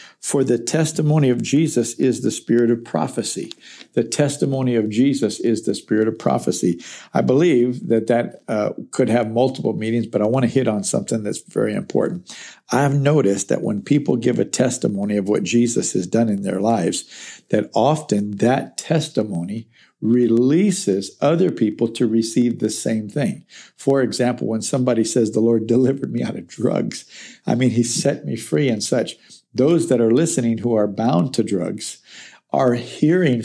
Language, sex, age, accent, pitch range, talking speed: English, male, 50-69, American, 110-135 Hz, 175 wpm